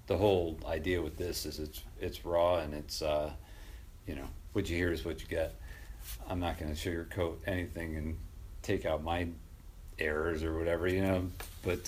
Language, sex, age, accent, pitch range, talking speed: English, male, 40-59, American, 80-110 Hz, 185 wpm